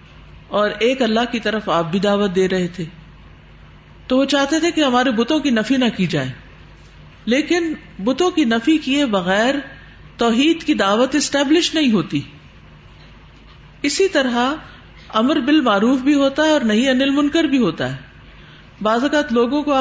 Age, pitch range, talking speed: 50-69, 185-265 Hz, 160 wpm